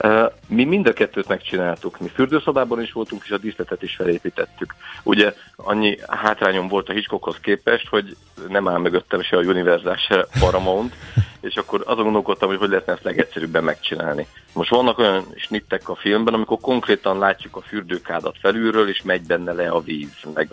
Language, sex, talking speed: Hungarian, male, 175 wpm